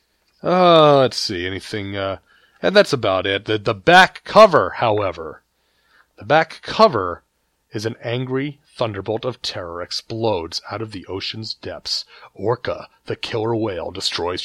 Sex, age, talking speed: male, 30-49, 140 wpm